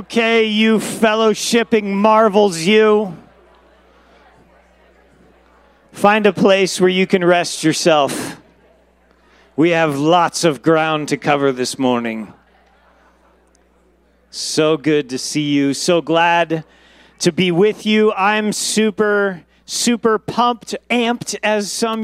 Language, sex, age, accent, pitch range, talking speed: English, male, 40-59, American, 150-210 Hz, 110 wpm